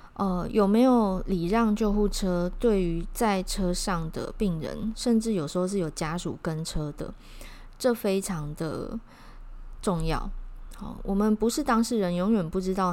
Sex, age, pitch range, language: female, 20-39, 170-210 Hz, Chinese